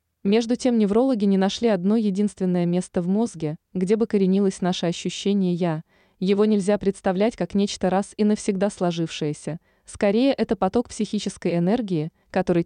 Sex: female